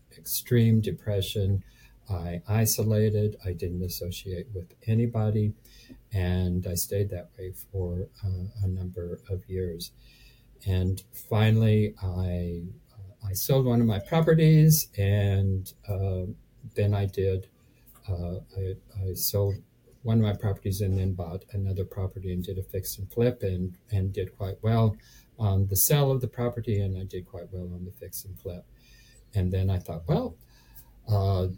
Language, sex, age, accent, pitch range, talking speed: English, male, 50-69, American, 95-115 Hz, 150 wpm